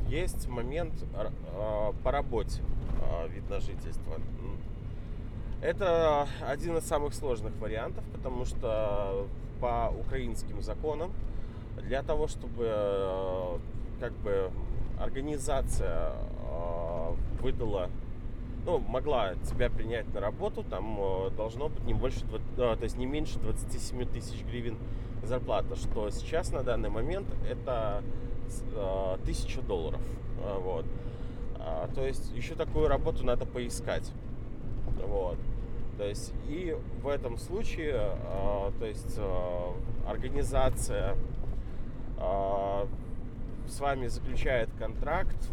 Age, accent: 20-39, native